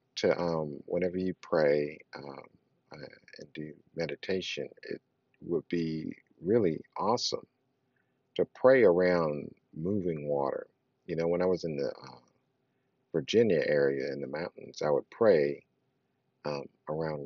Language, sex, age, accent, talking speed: English, male, 50-69, American, 130 wpm